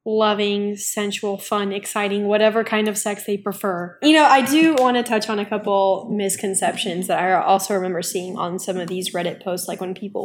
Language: English